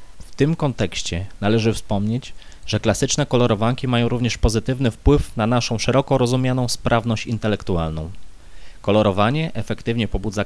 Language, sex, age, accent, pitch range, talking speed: Polish, male, 20-39, native, 100-125 Hz, 120 wpm